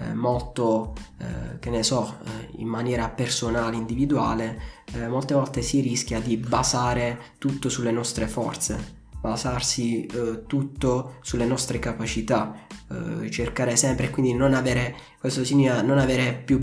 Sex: male